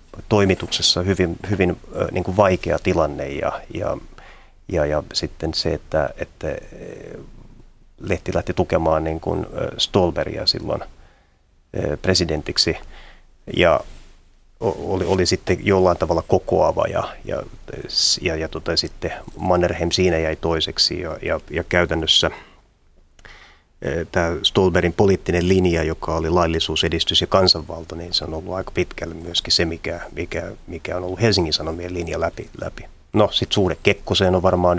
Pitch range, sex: 80-90 Hz, male